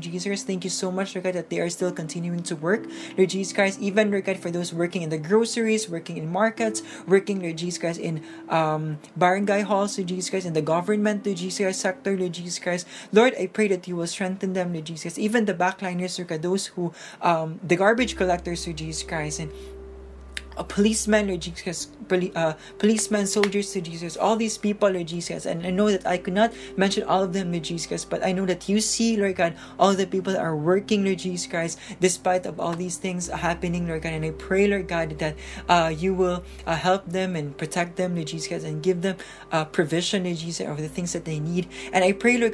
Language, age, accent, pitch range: English, 20-39, Filipino, 170-200 Hz